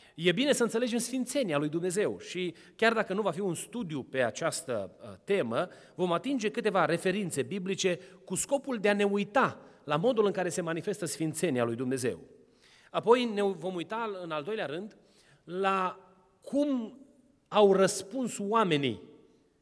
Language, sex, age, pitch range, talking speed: Romanian, male, 30-49, 175-230 Hz, 155 wpm